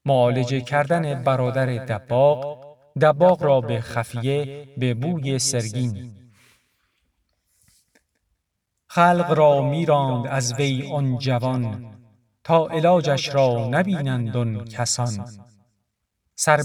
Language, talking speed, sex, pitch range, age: Persian, 90 wpm, male, 120-150 Hz, 50-69